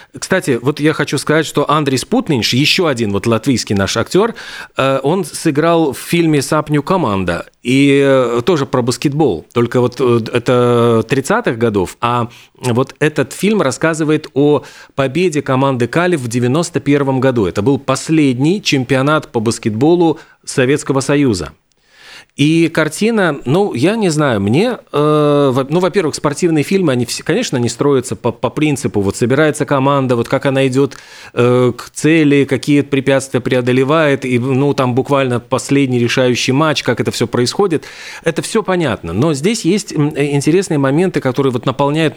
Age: 40-59